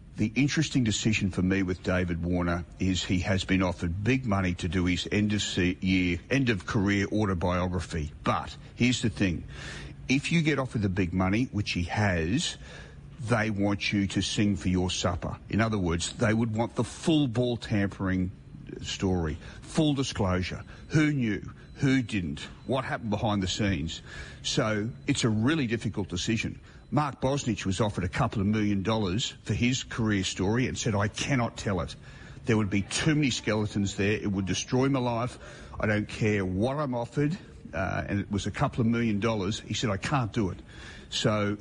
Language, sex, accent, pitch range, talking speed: English, male, Australian, 95-125 Hz, 180 wpm